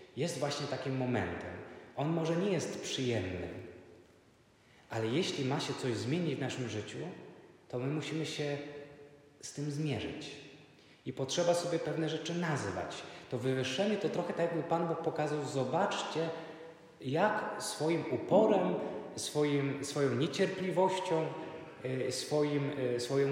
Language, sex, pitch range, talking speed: Polish, male, 115-160 Hz, 120 wpm